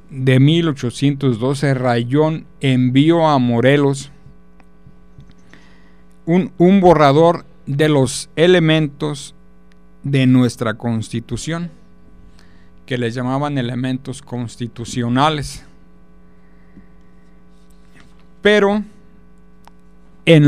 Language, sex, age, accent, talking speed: Spanish, male, 50-69, Mexican, 65 wpm